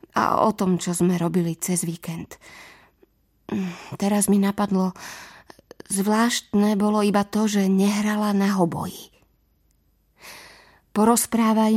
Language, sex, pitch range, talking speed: Slovak, female, 180-210 Hz, 100 wpm